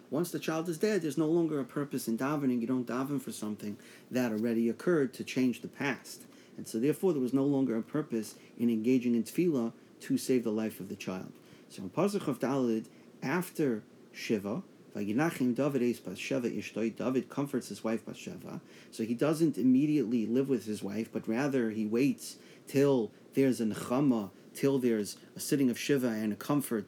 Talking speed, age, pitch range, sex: 190 wpm, 40-59, 115-140 Hz, male